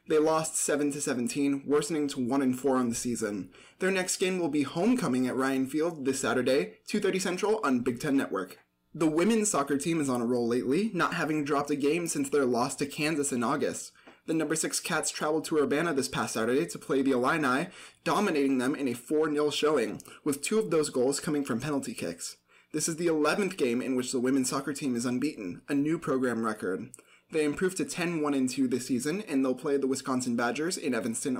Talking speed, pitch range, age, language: 205 wpm, 130-165 Hz, 20-39, English